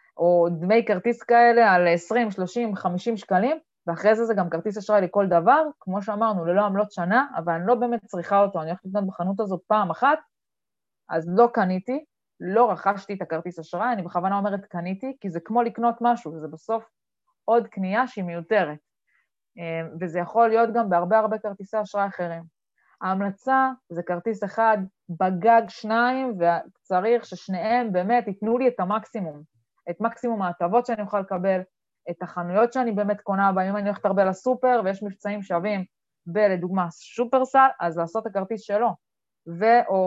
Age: 20-39